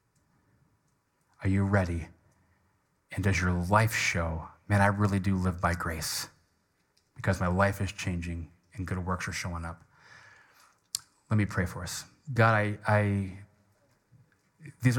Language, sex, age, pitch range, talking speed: English, male, 30-49, 95-120 Hz, 140 wpm